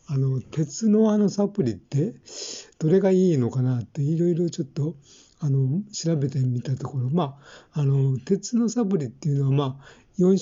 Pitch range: 135-180 Hz